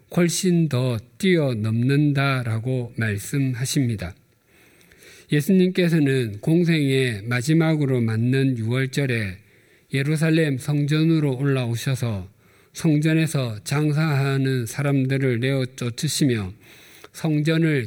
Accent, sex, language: native, male, Korean